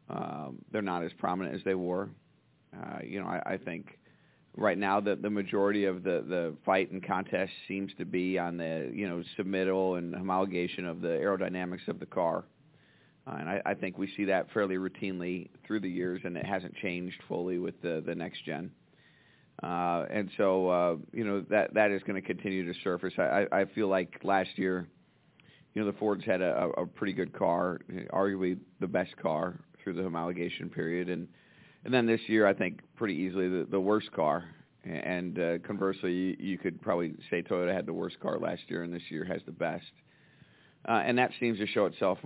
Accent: American